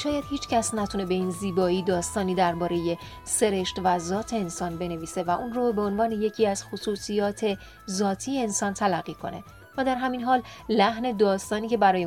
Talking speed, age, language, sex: 170 wpm, 30-49, Persian, female